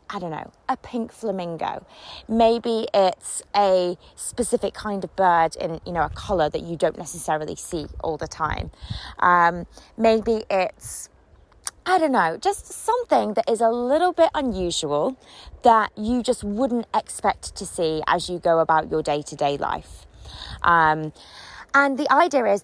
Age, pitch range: 20-39, 195-265 Hz